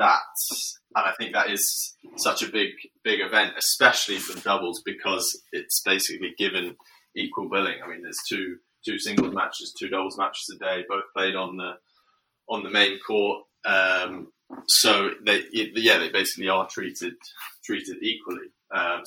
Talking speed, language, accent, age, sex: 165 wpm, English, British, 20-39, male